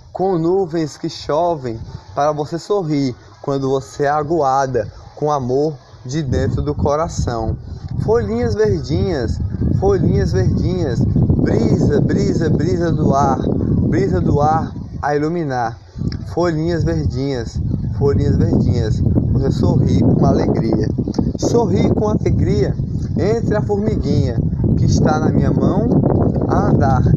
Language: Portuguese